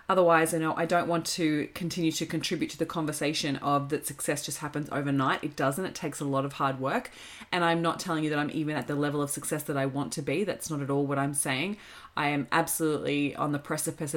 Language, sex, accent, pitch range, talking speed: English, female, Australian, 145-175 Hz, 250 wpm